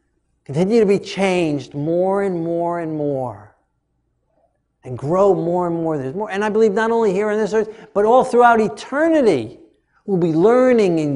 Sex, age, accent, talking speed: male, 50-69, American, 175 wpm